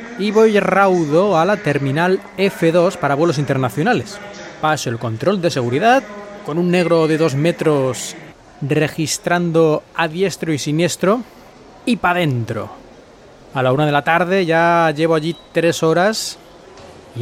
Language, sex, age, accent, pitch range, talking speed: Spanish, male, 20-39, Spanish, 145-180 Hz, 145 wpm